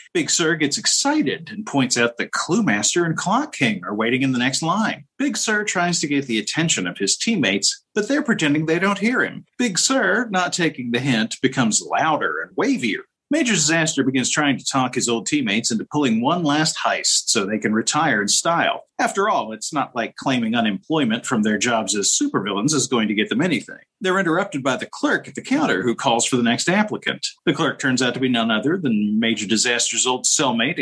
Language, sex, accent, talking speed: English, male, American, 215 wpm